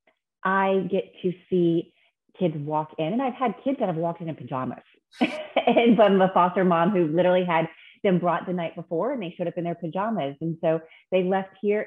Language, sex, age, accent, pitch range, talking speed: English, female, 30-49, American, 150-195 Hz, 210 wpm